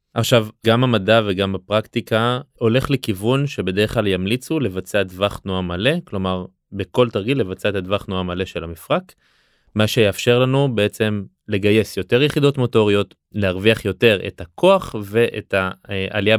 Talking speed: 140 wpm